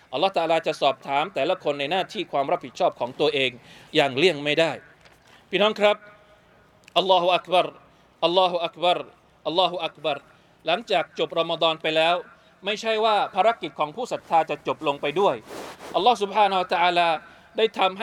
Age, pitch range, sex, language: 20-39, 160-195 Hz, male, Thai